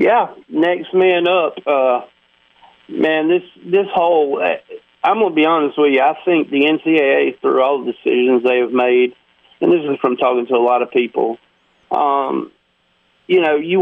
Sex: male